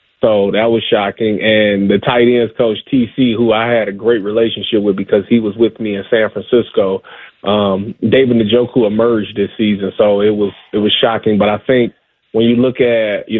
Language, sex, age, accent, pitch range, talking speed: English, male, 30-49, American, 105-125 Hz, 200 wpm